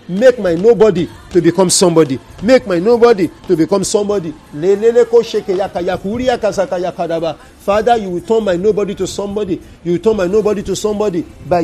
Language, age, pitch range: English, 50-69, 175-220 Hz